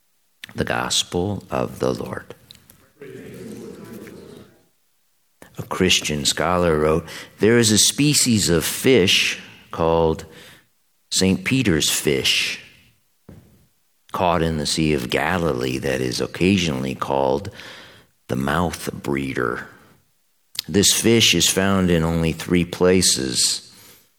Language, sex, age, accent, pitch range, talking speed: English, male, 50-69, American, 70-95 Hz, 100 wpm